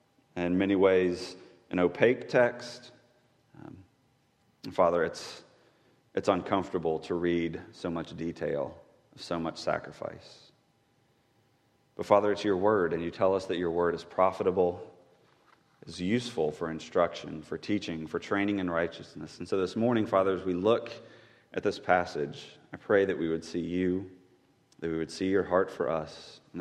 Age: 30-49